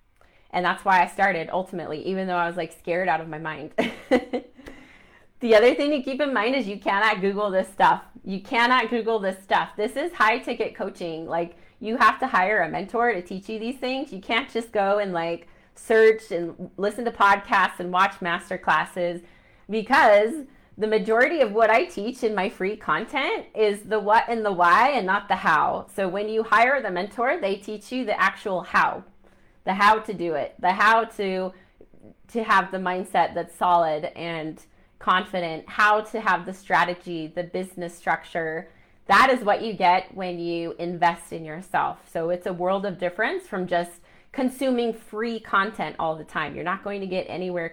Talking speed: 190 wpm